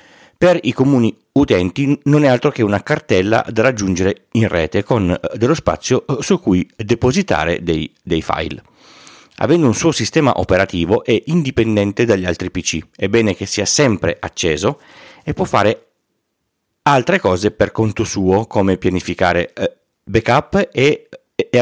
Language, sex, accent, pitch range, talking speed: Italian, male, native, 90-125 Hz, 145 wpm